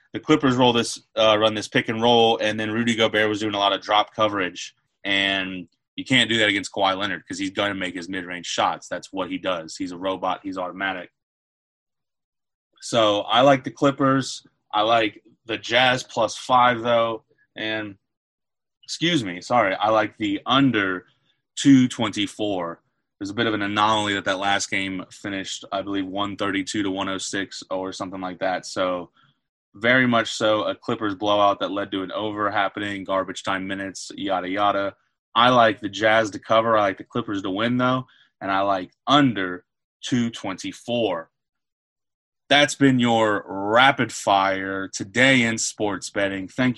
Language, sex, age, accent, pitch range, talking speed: English, male, 20-39, American, 100-120 Hz, 170 wpm